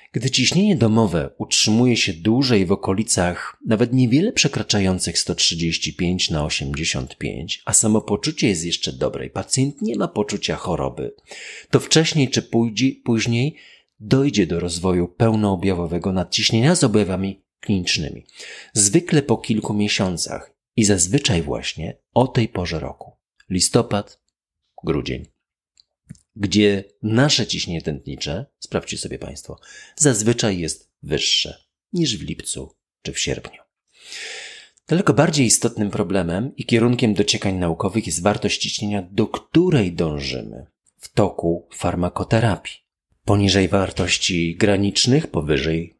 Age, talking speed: 40-59, 115 wpm